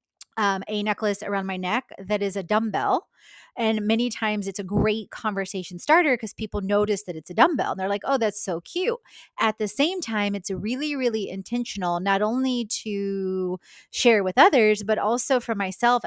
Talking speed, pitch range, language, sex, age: 185 wpm, 195-235 Hz, English, female, 20-39